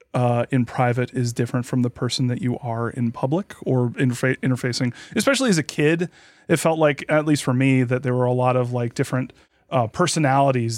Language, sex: English, male